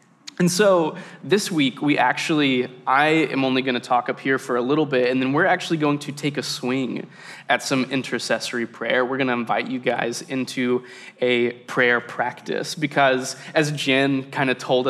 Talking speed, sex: 190 wpm, male